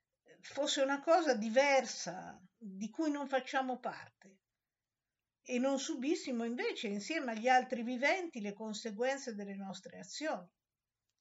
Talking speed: 120 wpm